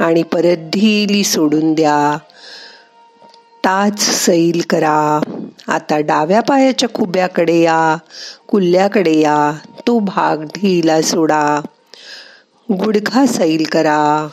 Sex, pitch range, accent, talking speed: female, 160-230 Hz, native, 90 wpm